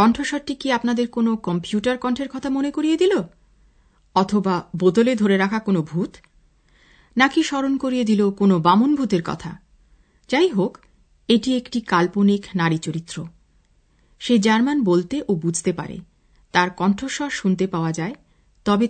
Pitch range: 180-240 Hz